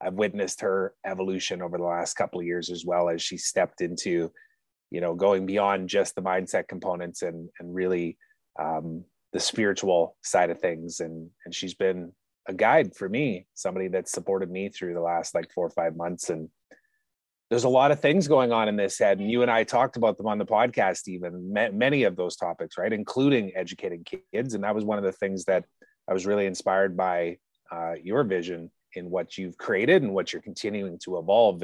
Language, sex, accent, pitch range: English, male, American, 85-105 Hz